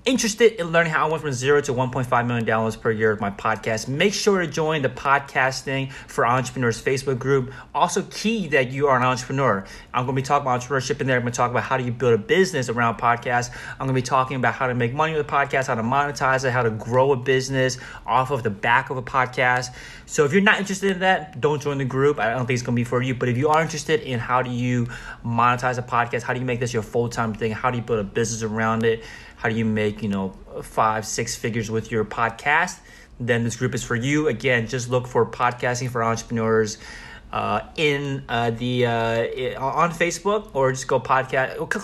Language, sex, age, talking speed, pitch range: English, male, 30-49, 245 wpm, 115-140 Hz